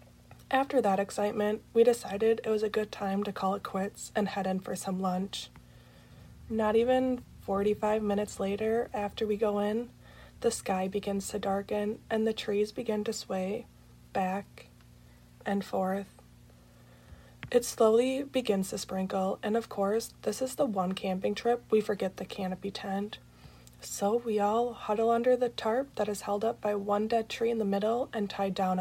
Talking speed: 175 wpm